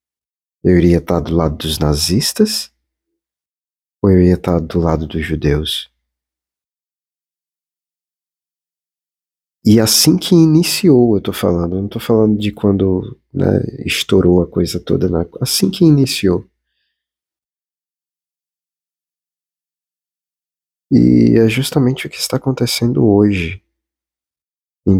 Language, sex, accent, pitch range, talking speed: Portuguese, male, Brazilian, 75-105 Hz, 110 wpm